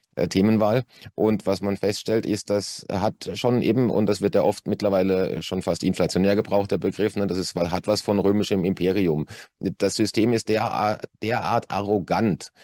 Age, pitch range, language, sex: 30-49, 100-110 Hz, German, male